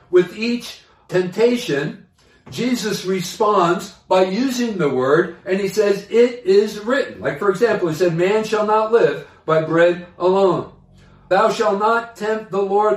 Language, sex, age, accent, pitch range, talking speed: English, male, 60-79, American, 160-210 Hz, 155 wpm